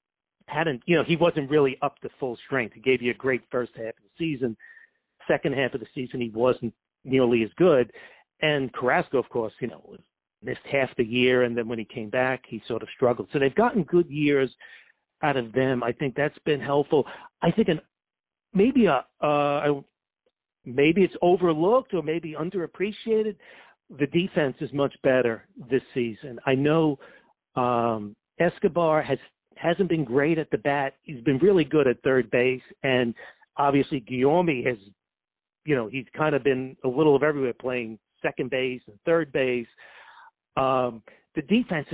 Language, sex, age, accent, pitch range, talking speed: English, male, 50-69, American, 130-175 Hz, 175 wpm